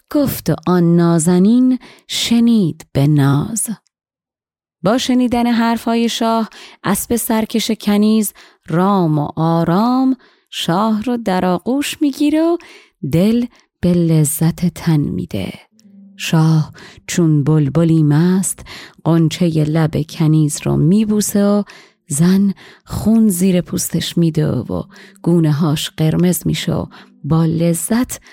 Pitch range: 160-210 Hz